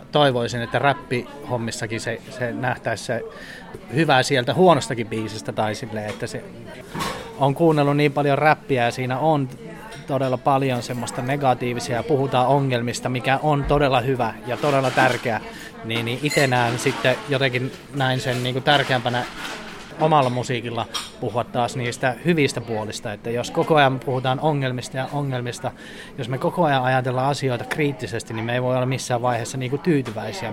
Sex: male